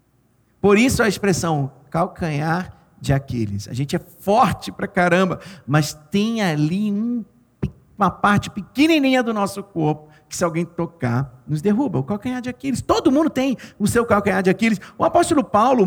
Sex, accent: male, Brazilian